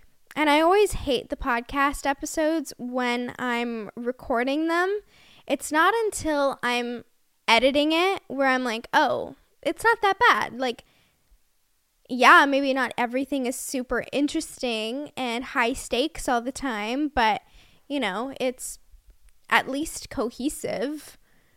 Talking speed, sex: 130 wpm, female